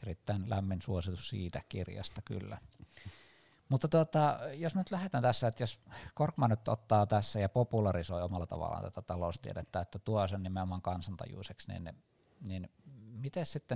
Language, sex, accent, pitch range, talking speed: Finnish, male, native, 90-115 Hz, 145 wpm